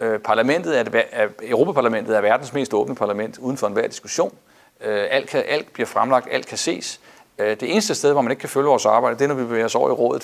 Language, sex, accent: Danish, male, native